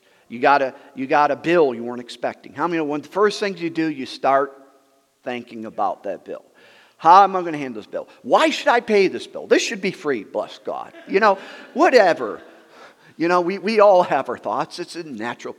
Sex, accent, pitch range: male, American, 125-175 Hz